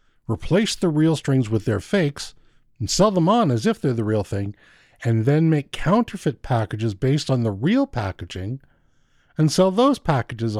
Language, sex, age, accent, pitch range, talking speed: English, male, 50-69, American, 115-160 Hz, 175 wpm